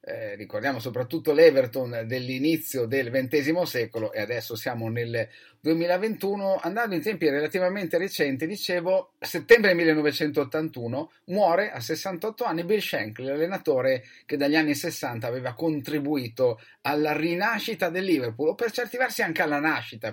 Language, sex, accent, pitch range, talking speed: Italian, male, native, 130-185 Hz, 135 wpm